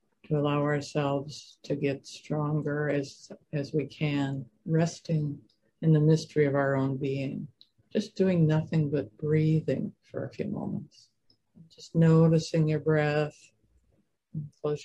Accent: American